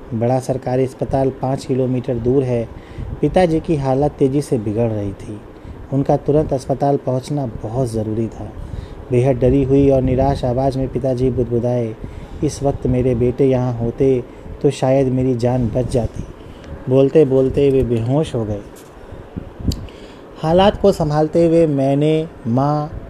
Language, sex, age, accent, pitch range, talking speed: Hindi, male, 30-49, native, 115-140 Hz, 145 wpm